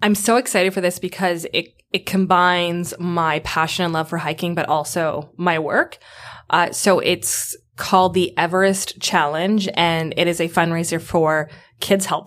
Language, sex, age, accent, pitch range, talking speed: English, female, 20-39, American, 165-190 Hz, 165 wpm